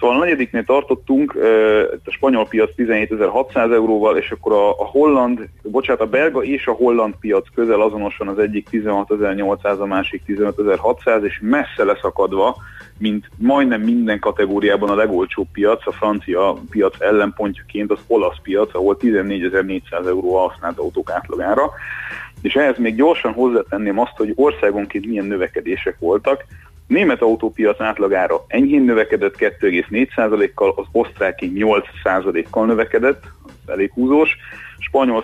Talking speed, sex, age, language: 135 wpm, male, 30-49, Hungarian